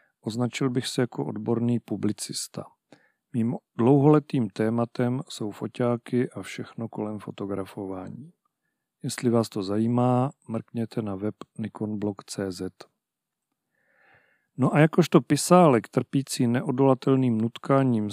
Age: 40-59